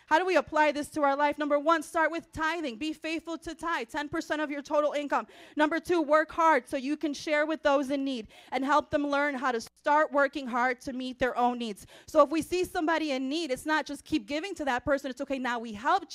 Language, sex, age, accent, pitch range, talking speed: English, female, 30-49, American, 255-305 Hz, 255 wpm